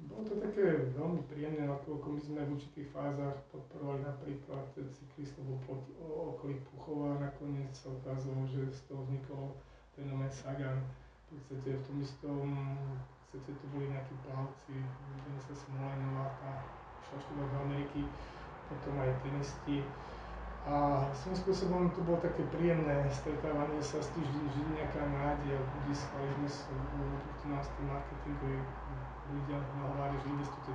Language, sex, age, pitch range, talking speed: Slovak, male, 20-39, 135-145 Hz, 135 wpm